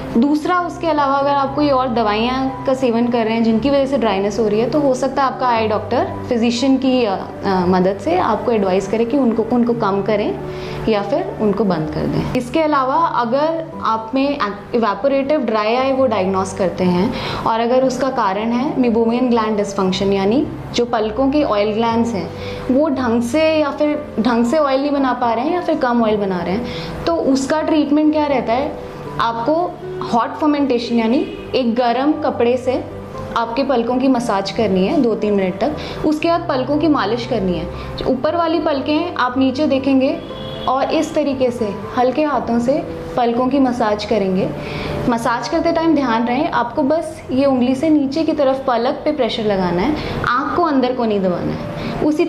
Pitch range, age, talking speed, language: 225-290 Hz, 20-39, 190 wpm, Hindi